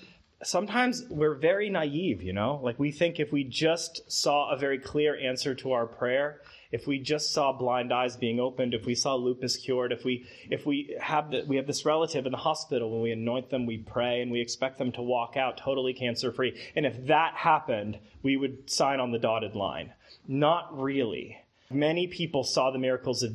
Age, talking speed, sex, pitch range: 30-49, 205 wpm, male, 125-170 Hz